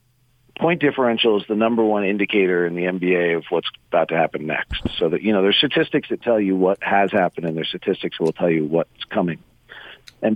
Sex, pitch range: male, 95-125 Hz